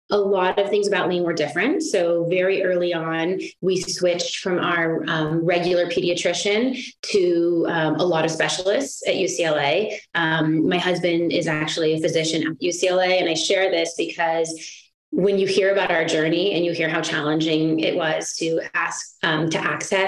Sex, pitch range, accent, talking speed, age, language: female, 165-195 Hz, American, 175 wpm, 30-49, English